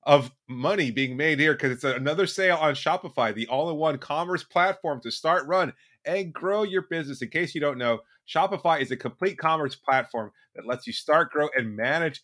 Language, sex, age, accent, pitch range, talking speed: English, male, 30-49, American, 130-180 Hz, 195 wpm